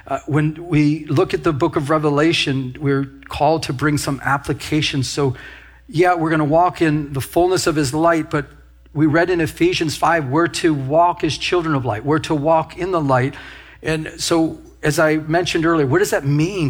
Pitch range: 135-170 Hz